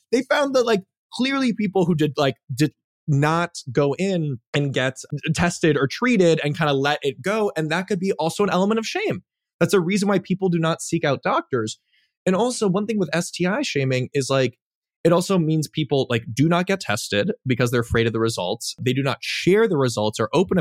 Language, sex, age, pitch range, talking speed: English, male, 20-39, 115-170 Hz, 220 wpm